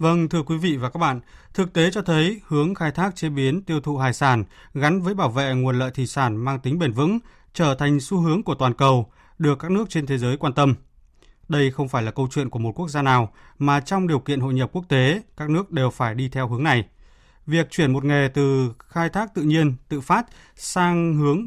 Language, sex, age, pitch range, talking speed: Vietnamese, male, 20-39, 130-165 Hz, 245 wpm